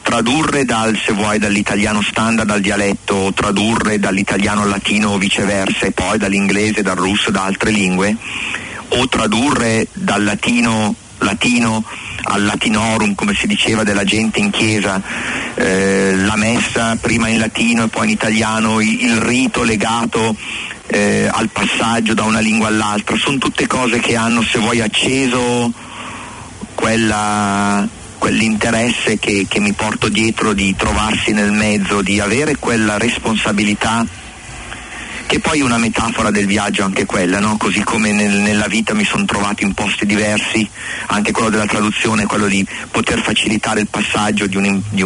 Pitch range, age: 100-110 Hz, 40-59